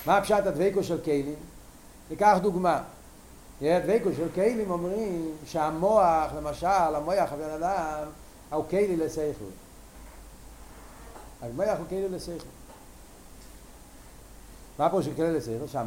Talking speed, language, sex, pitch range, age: 55 wpm, Hebrew, male, 150-200 Hz, 60-79